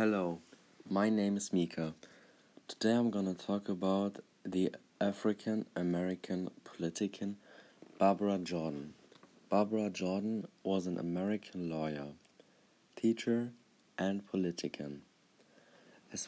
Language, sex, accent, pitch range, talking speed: English, male, German, 90-105 Hz, 100 wpm